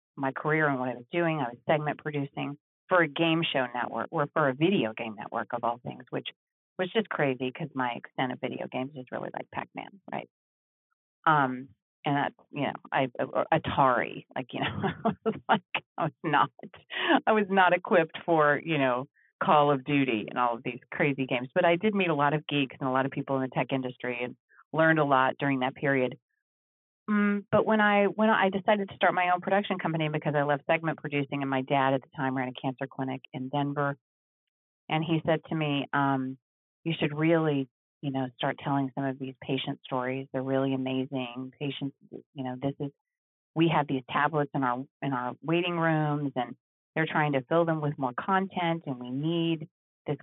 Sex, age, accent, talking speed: female, 40-59, American, 205 wpm